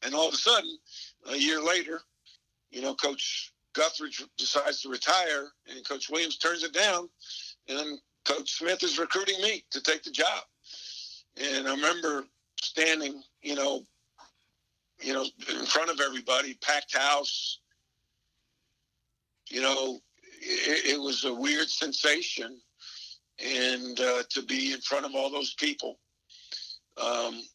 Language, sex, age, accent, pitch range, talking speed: English, male, 50-69, American, 125-160 Hz, 140 wpm